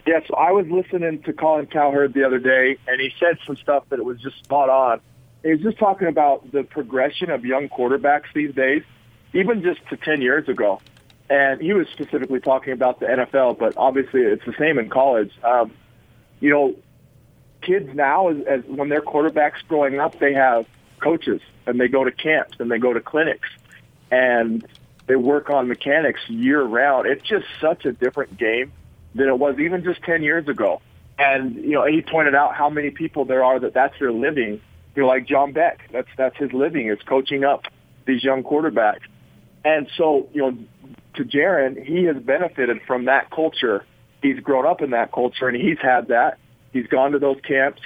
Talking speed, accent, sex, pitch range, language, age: 195 wpm, American, male, 130-150 Hz, English, 40-59